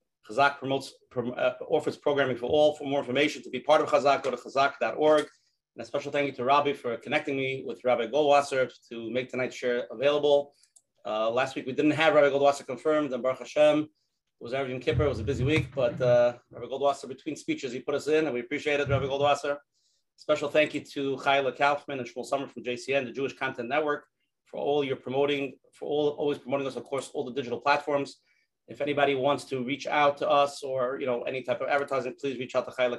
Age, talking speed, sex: 30-49, 225 wpm, male